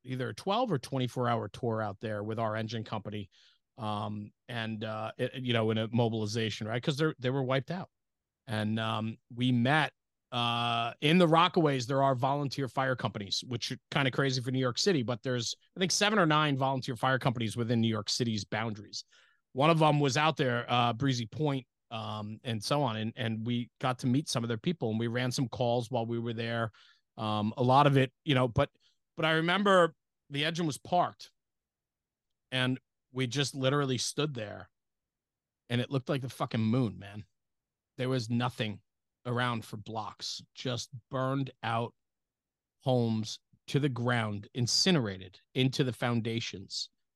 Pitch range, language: 110-140 Hz, English